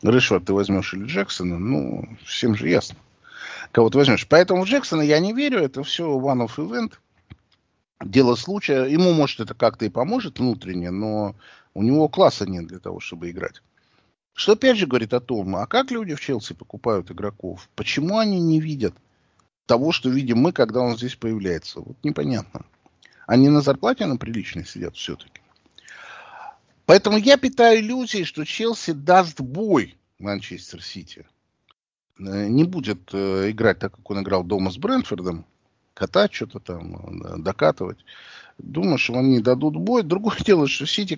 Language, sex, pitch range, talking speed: Russian, male, 100-155 Hz, 155 wpm